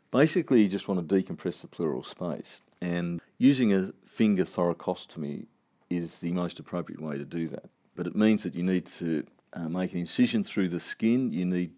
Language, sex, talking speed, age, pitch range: English, male, 195 wpm, 40-59, 85-100 Hz